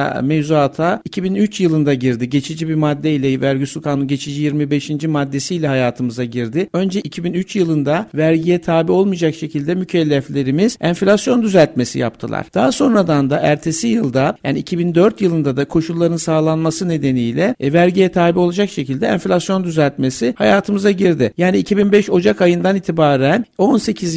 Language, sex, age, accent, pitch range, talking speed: Turkish, male, 60-79, native, 150-190 Hz, 130 wpm